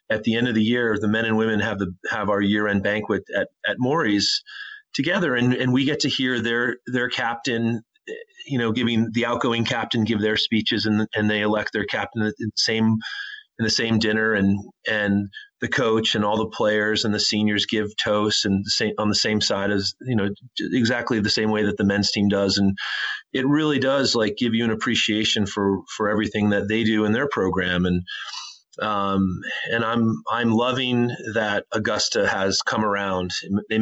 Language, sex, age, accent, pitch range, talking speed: English, male, 30-49, American, 105-120 Hz, 205 wpm